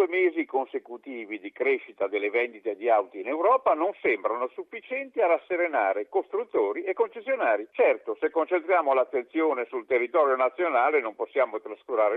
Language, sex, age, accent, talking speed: Italian, male, 50-69, native, 140 wpm